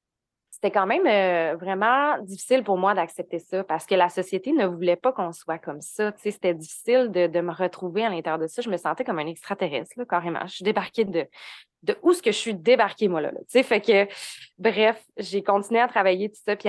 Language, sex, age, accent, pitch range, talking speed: French, female, 20-39, Canadian, 170-205 Hz, 235 wpm